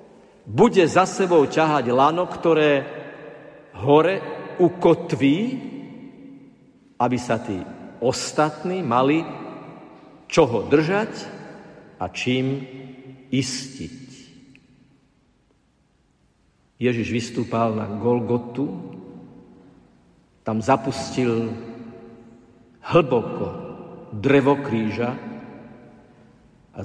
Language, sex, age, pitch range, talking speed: Slovak, male, 50-69, 120-150 Hz, 65 wpm